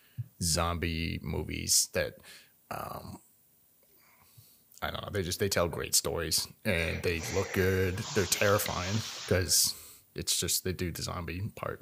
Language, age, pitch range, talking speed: English, 30-49, 95-130 Hz, 135 wpm